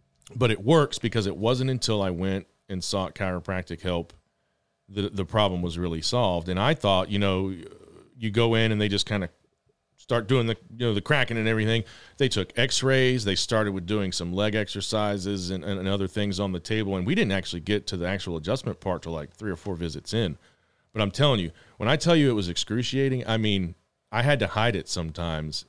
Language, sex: English, male